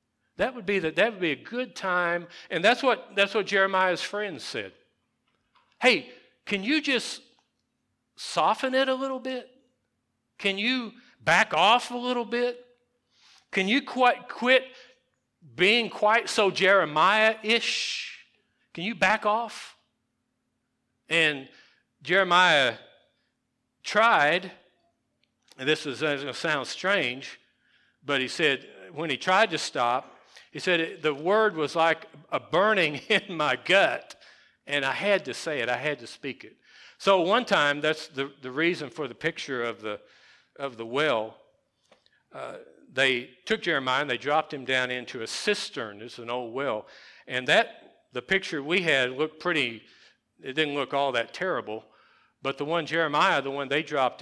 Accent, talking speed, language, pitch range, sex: American, 155 wpm, English, 140-220 Hz, male